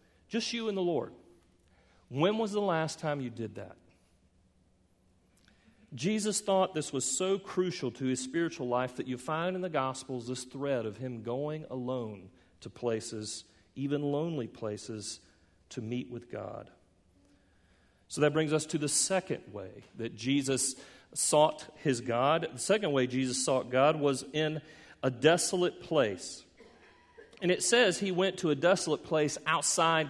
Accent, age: American, 40-59